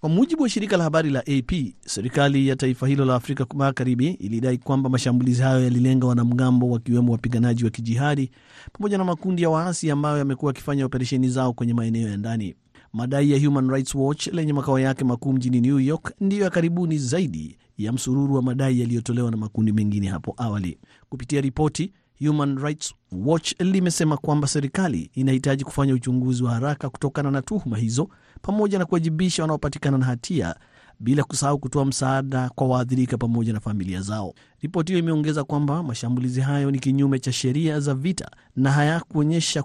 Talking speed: 175 wpm